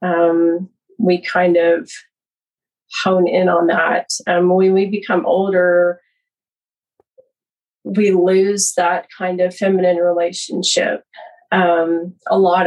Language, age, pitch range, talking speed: English, 30-49, 180-215 Hz, 110 wpm